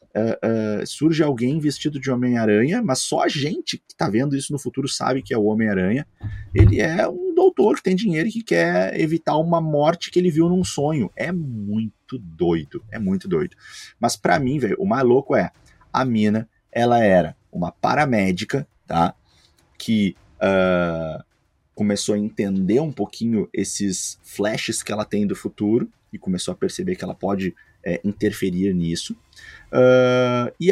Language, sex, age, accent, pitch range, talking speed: Portuguese, male, 30-49, Brazilian, 105-140 Hz, 170 wpm